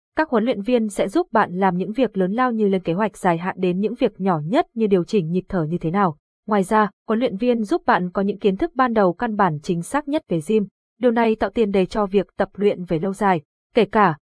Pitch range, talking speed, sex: 185-235 Hz, 275 wpm, female